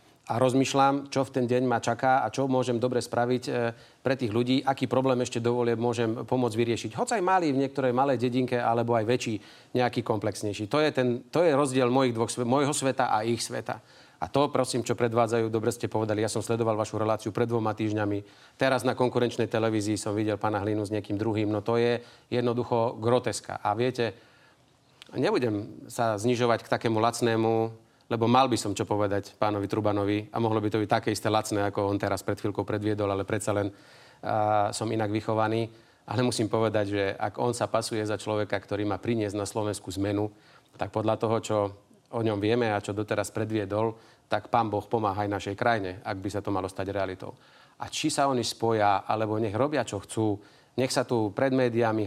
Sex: male